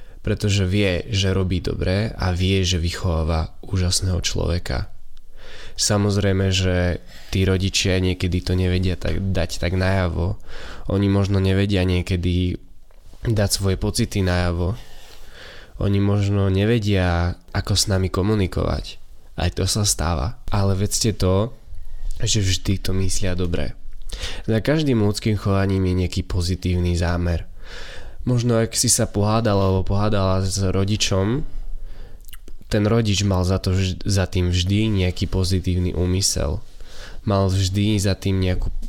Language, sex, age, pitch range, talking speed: Slovak, male, 20-39, 90-100 Hz, 125 wpm